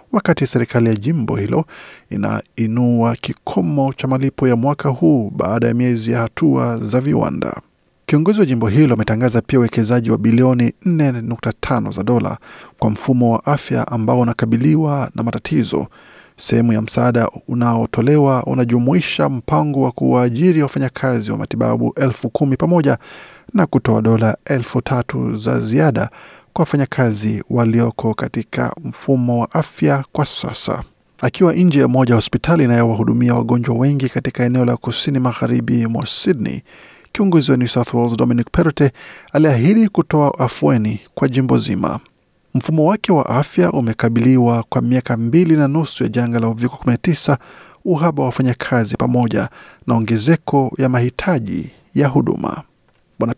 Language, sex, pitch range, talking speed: Swahili, male, 120-145 Hz, 135 wpm